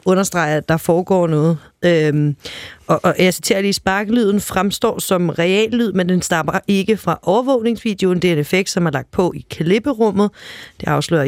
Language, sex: Danish, female